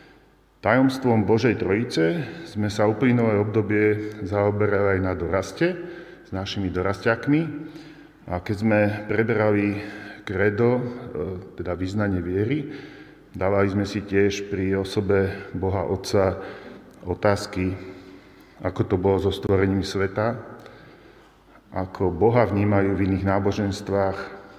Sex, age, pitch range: male, 40-59, 95-115 Hz